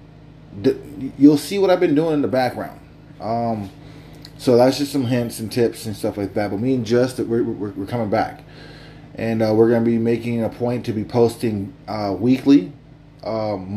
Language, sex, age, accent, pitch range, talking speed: English, male, 20-39, American, 110-145 Hz, 195 wpm